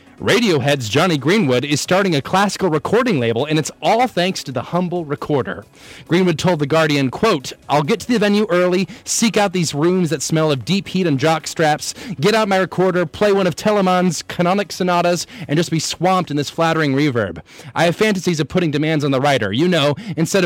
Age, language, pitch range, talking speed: 30-49, English, 140-185 Hz, 200 wpm